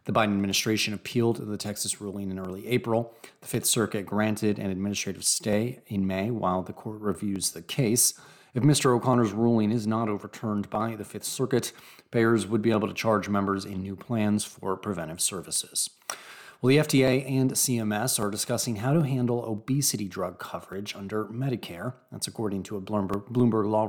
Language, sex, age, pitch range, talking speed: English, male, 30-49, 100-120 Hz, 175 wpm